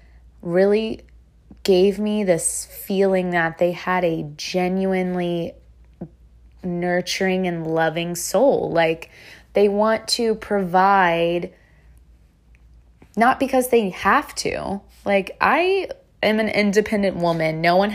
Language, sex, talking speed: English, female, 105 wpm